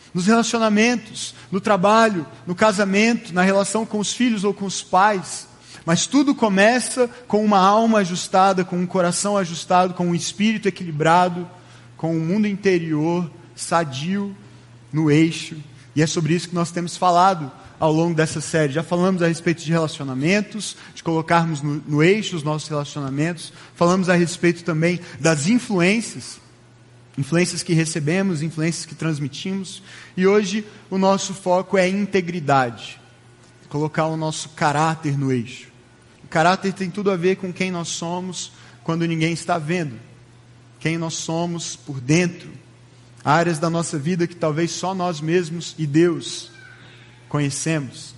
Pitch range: 150-190 Hz